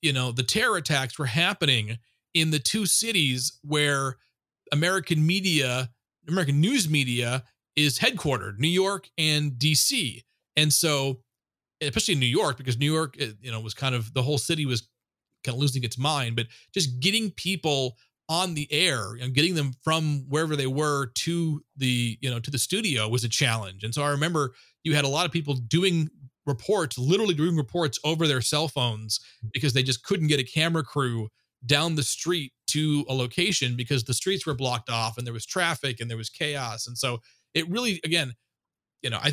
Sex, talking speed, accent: male, 190 wpm, American